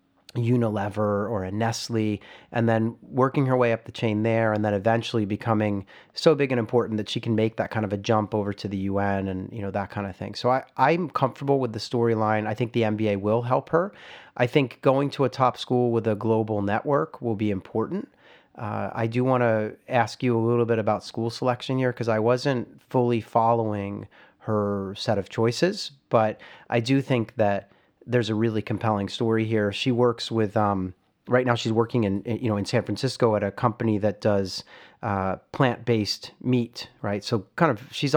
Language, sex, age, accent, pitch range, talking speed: English, male, 30-49, American, 105-125 Hz, 205 wpm